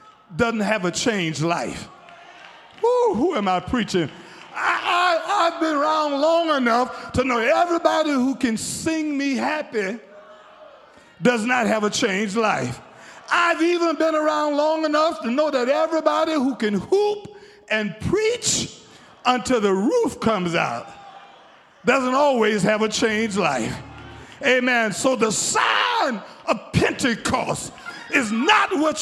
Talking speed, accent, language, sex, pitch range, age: 130 wpm, American, English, male, 210-330 Hz, 50-69